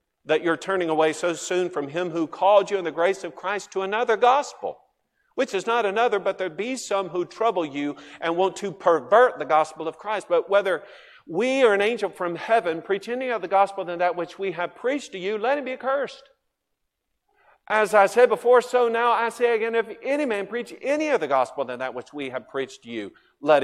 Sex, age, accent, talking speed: male, 50-69, American, 220 wpm